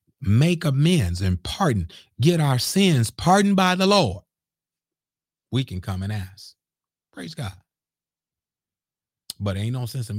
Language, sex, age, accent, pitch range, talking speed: English, male, 40-59, American, 95-160 Hz, 135 wpm